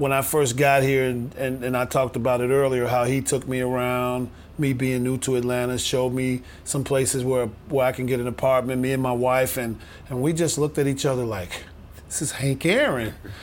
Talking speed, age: 230 wpm, 40-59